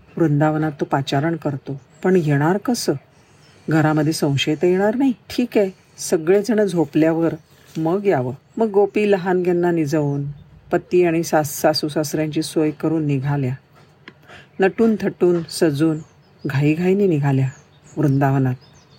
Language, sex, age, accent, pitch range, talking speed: Marathi, female, 50-69, native, 145-180 Hz, 105 wpm